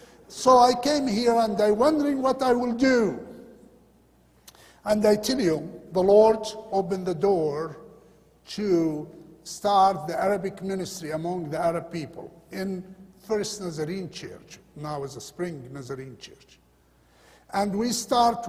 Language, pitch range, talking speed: English, 160-220 Hz, 135 wpm